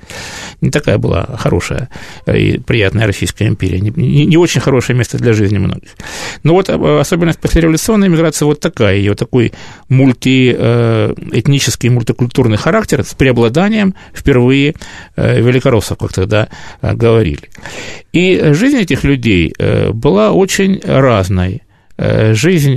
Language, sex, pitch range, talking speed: Russian, male, 105-145 Hz, 130 wpm